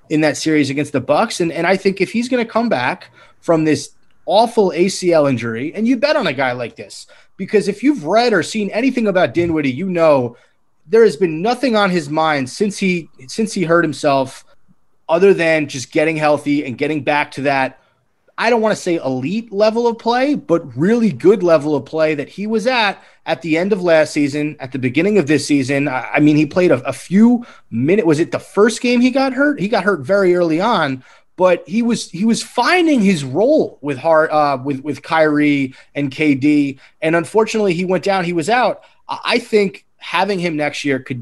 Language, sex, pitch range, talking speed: English, male, 145-200 Hz, 215 wpm